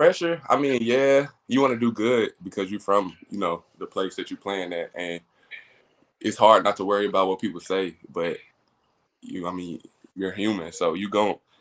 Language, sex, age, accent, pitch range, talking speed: English, male, 20-39, American, 90-100 Hz, 195 wpm